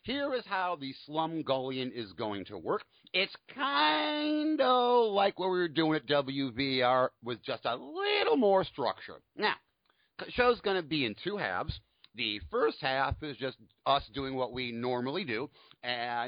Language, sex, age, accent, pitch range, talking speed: English, male, 50-69, American, 115-180 Hz, 175 wpm